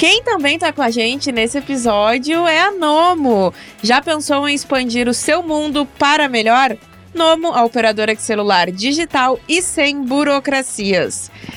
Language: Portuguese